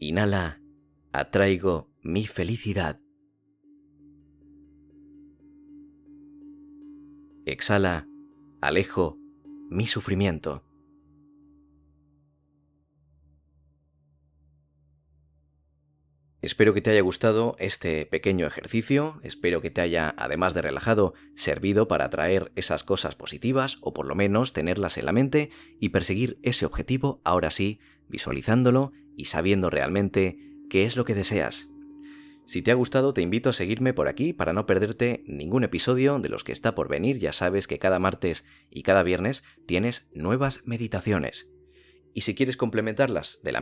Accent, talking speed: Spanish, 125 wpm